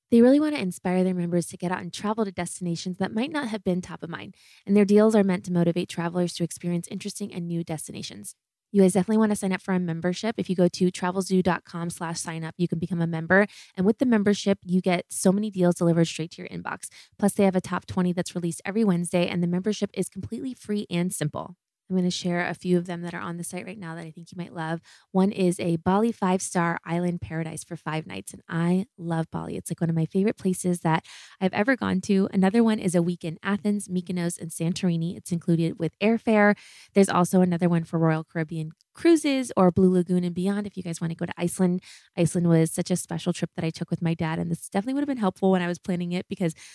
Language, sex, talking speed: English, female, 255 wpm